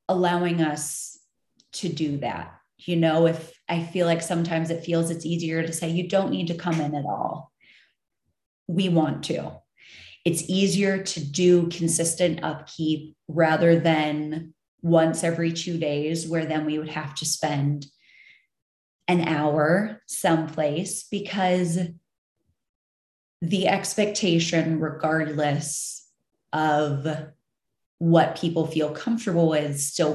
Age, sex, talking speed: 30-49, female, 125 wpm